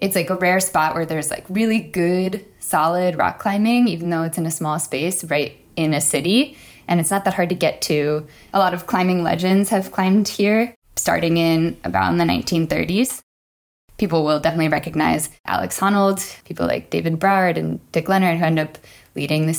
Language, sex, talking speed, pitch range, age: English, female, 195 wpm, 150-185 Hz, 10-29